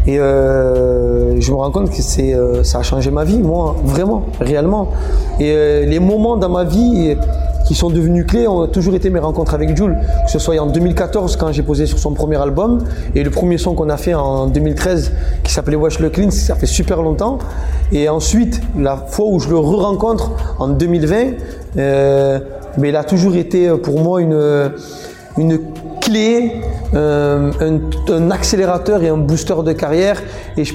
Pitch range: 135-180 Hz